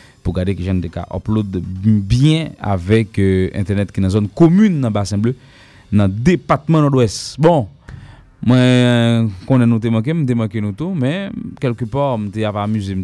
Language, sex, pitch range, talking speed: English, male, 95-125 Hz, 180 wpm